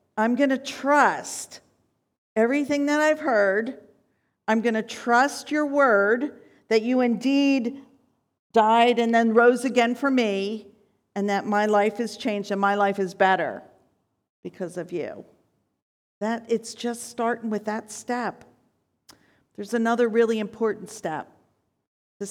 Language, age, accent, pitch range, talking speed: English, 50-69, American, 200-250 Hz, 135 wpm